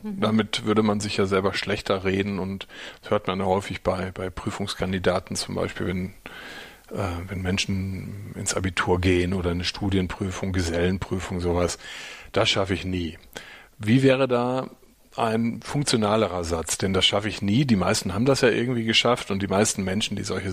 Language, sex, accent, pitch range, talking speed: German, male, German, 100-125 Hz, 170 wpm